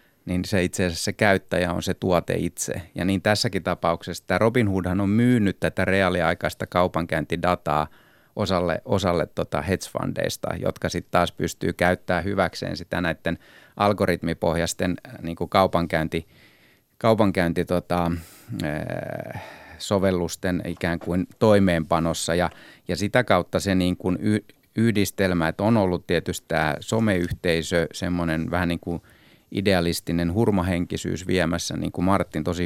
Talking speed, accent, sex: 125 wpm, native, male